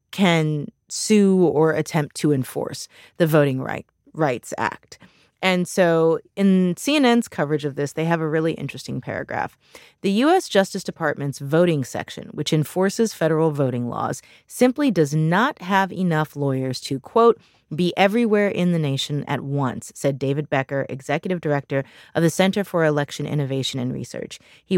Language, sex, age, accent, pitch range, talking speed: English, female, 30-49, American, 145-195 Hz, 155 wpm